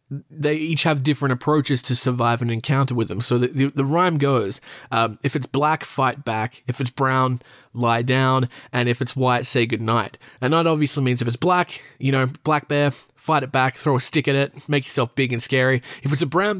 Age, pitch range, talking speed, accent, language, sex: 20-39, 125-155 Hz, 225 wpm, Australian, English, male